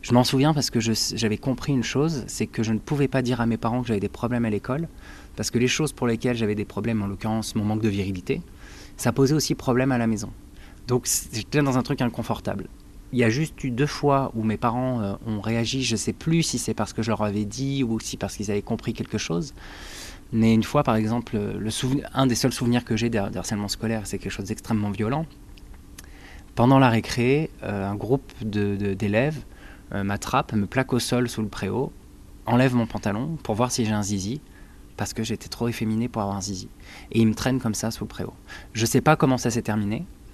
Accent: French